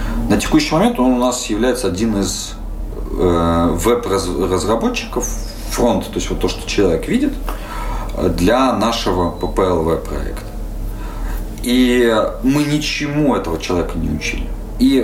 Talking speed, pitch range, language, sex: 125 wpm, 95-125 Hz, Russian, male